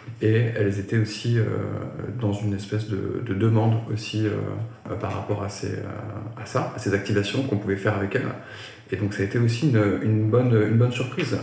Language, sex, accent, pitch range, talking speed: French, male, French, 105-120 Hz, 205 wpm